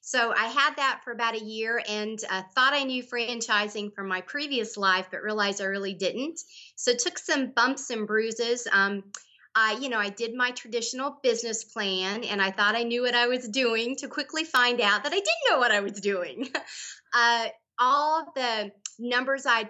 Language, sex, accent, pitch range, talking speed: English, female, American, 200-250 Hz, 200 wpm